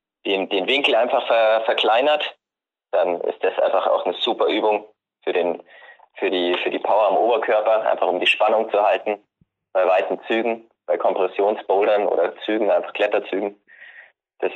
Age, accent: 20-39, German